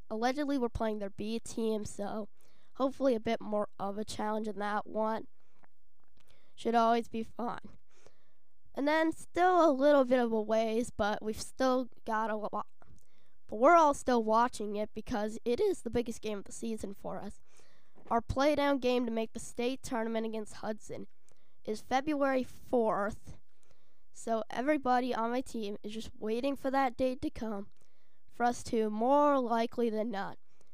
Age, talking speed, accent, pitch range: 10-29, 170 wpm, American, 215-250 Hz